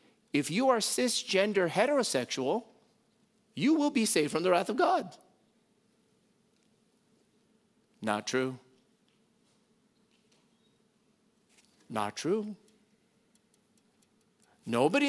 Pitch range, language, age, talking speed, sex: 165-225 Hz, English, 50-69, 75 wpm, male